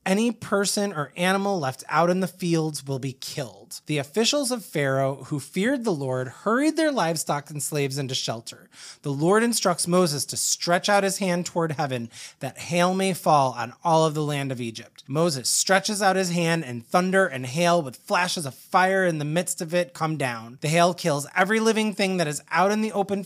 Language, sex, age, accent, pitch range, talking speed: English, male, 20-39, American, 135-200 Hz, 210 wpm